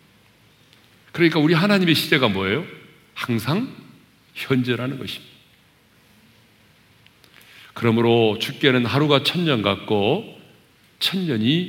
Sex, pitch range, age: male, 110-150 Hz, 40-59